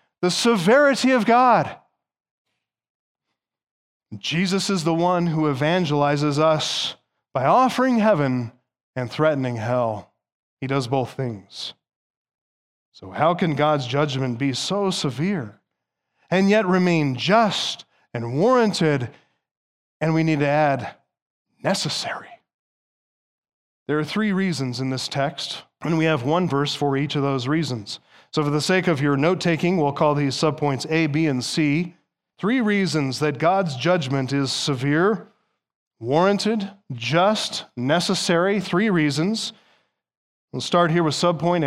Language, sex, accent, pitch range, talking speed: English, male, American, 145-210 Hz, 130 wpm